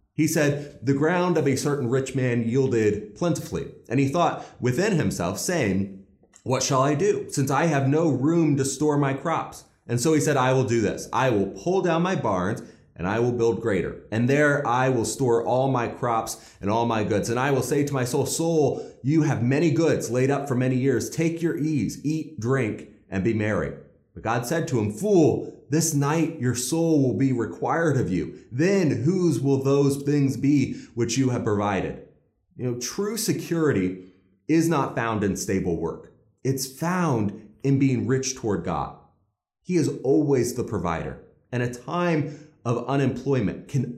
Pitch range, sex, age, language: 110-145 Hz, male, 30-49, English